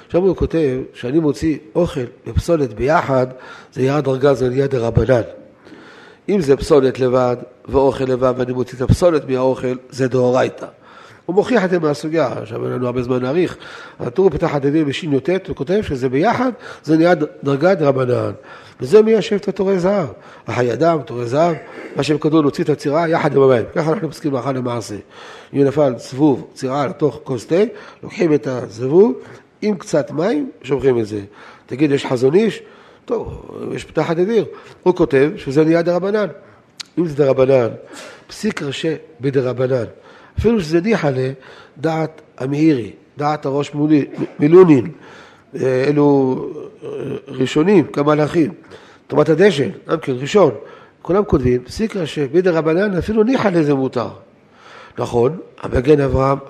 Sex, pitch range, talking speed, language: male, 130-170 Hz, 135 wpm, Hebrew